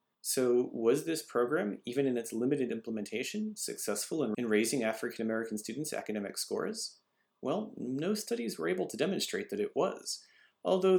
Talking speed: 145 wpm